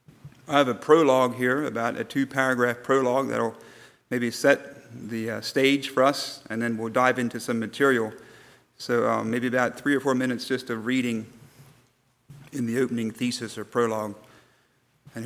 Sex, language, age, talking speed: male, English, 40-59, 165 wpm